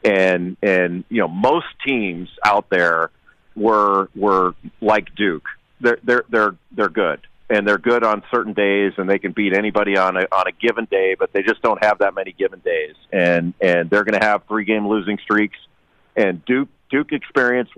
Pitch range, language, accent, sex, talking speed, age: 95-110 Hz, English, American, male, 190 wpm, 40-59